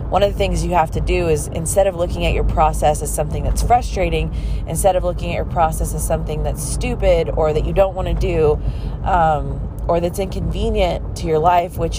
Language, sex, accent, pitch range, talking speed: English, female, American, 145-175 Hz, 220 wpm